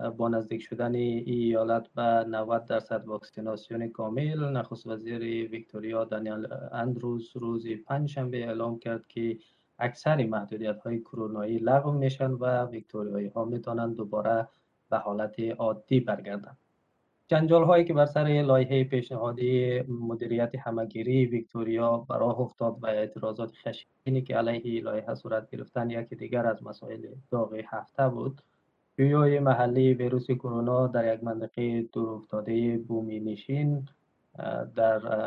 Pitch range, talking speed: 110-130 Hz, 130 wpm